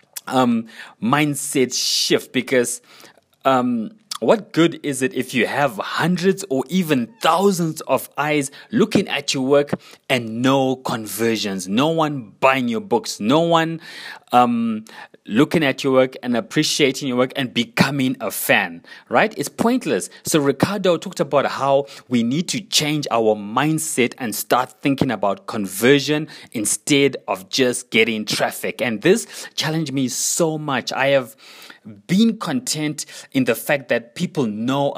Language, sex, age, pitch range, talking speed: English, male, 30-49, 125-170 Hz, 145 wpm